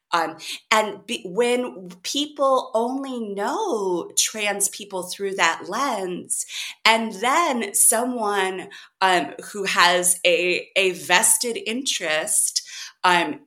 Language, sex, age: English, female, 30-49